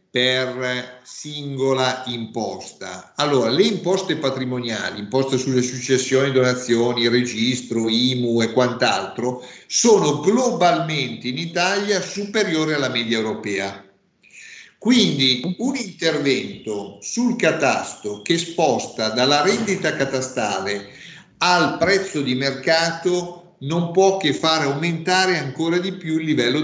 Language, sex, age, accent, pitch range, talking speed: Italian, male, 50-69, native, 125-185 Hz, 105 wpm